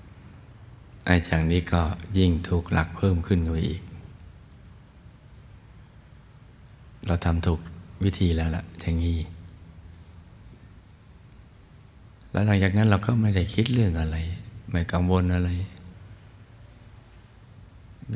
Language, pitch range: Thai, 85-105 Hz